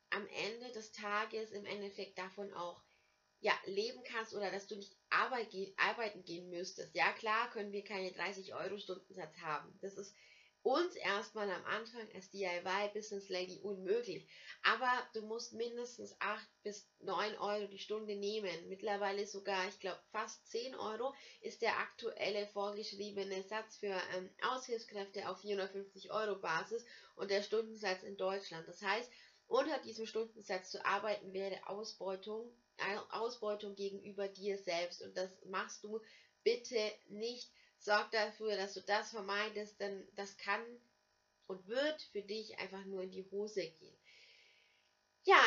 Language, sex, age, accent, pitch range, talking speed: German, female, 20-39, German, 195-225 Hz, 150 wpm